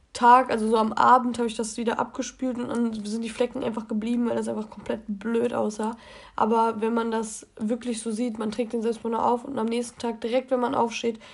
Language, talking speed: German, 230 wpm